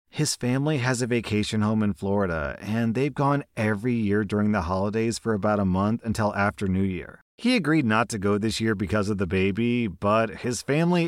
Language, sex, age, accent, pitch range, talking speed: English, male, 30-49, American, 105-145 Hz, 205 wpm